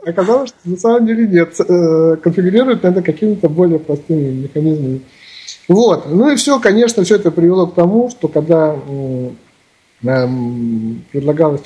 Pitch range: 130-180 Hz